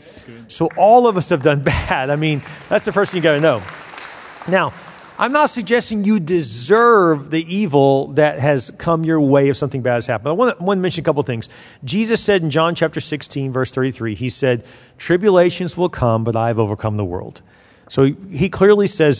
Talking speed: 200 wpm